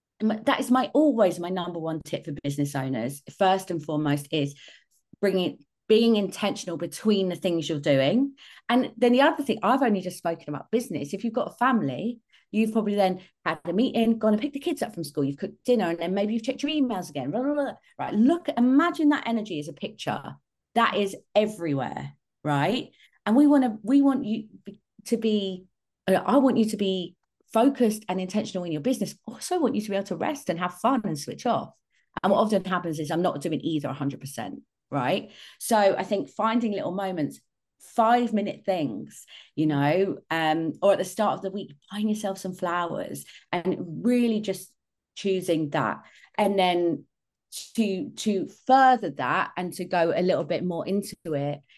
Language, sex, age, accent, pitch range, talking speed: English, female, 30-49, British, 170-230 Hz, 190 wpm